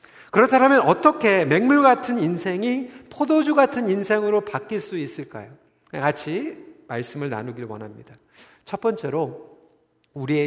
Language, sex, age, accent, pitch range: Korean, male, 40-59, native, 155-240 Hz